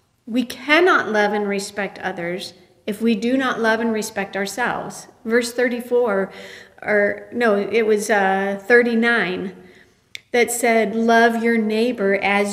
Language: English